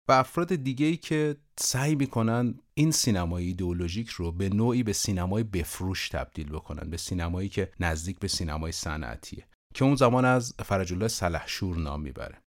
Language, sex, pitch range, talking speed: Persian, male, 90-125 Hz, 155 wpm